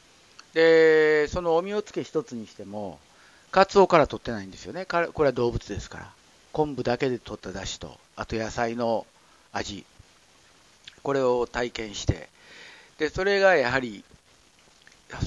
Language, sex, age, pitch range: Japanese, male, 50-69, 115-170 Hz